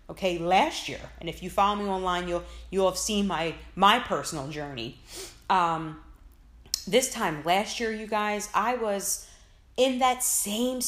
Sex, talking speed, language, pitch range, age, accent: female, 160 wpm, English, 160-210 Hz, 30-49, American